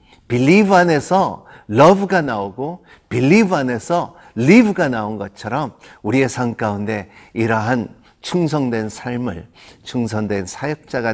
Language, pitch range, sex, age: Korean, 105-130 Hz, male, 50-69